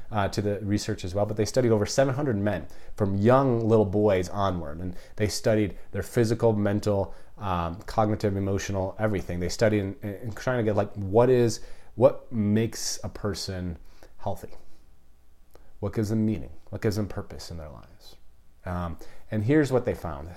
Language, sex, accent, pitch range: English, male, American, 90-110 Hz